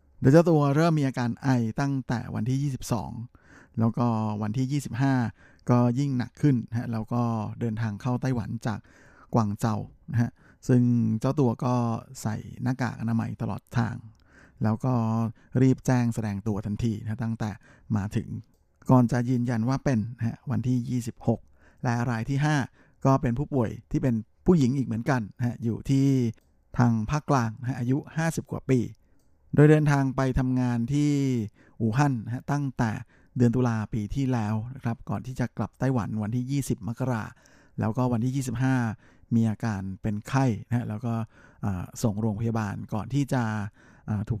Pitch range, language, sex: 110-130 Hz, Thai, male